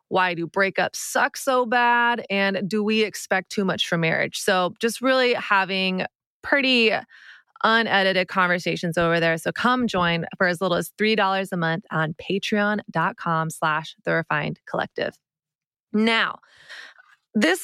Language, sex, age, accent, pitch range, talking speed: English, female, 20-39, American, 175-220 Hz, 140 wpm